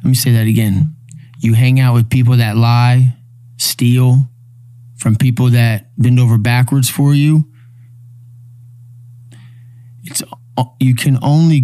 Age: 20-39